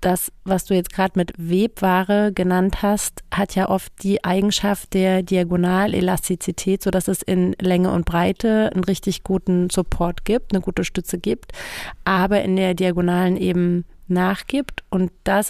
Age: 30-49